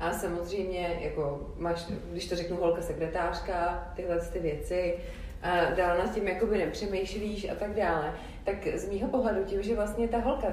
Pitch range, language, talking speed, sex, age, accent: 170-215 Hz, Czech, 165 wpm, female, 30-49, native